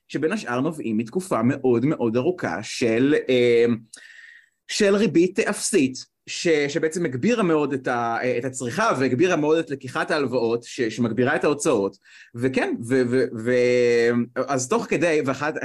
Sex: male